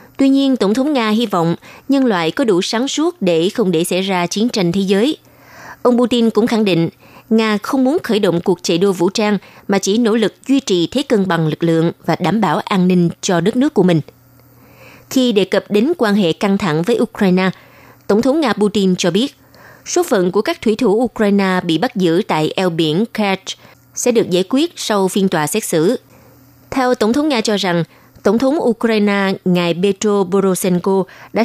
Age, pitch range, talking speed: 20-39, 175-235 Hz, 210 wpm